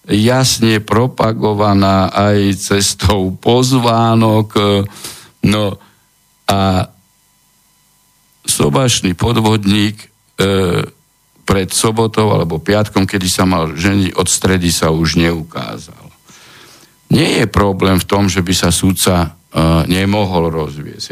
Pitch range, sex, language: 90-110 Hz, male, Slovak